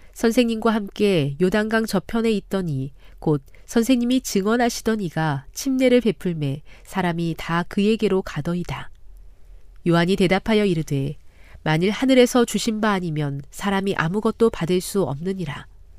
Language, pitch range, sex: Korean, 145-220 Hz, female